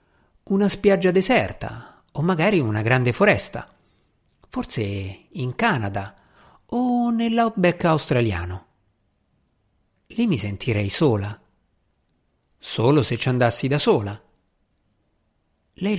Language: Italian